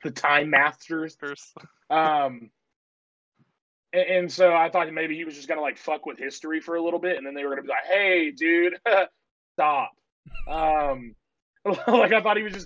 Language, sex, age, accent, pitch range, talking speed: English, male, 20-39, American, 130-170 Hz, 195 wpm